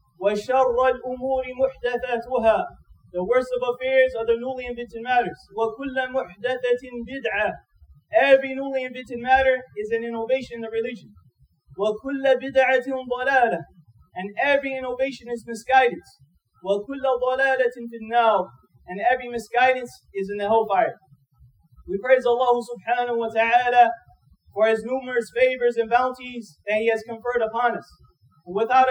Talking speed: 125 wpm